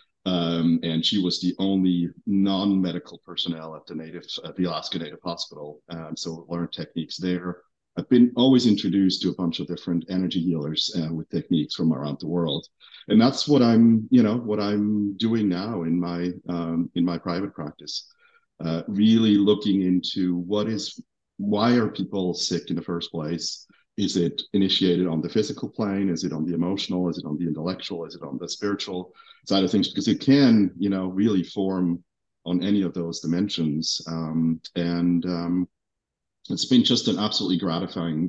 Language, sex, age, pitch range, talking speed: English, male, 40-59, 85-100 Hz, 180 wpm